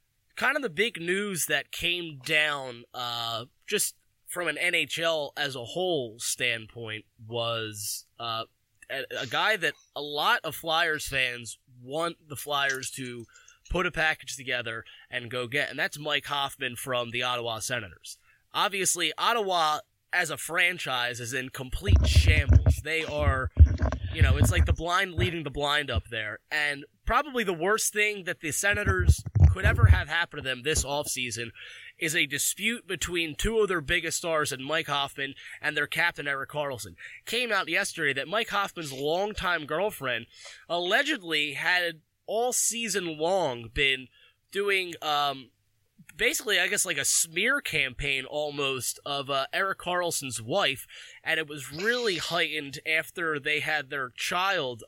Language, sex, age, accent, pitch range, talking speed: English, male, 20-39, American, 120-165 Hz, 155 wpm